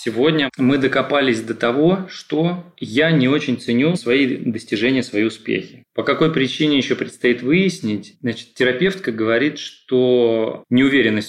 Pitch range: 105-125 Hz